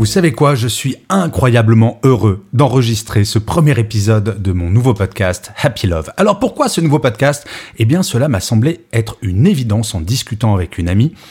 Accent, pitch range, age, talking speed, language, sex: French, 105-145 Hz, 40-59, 185 wpm, French, male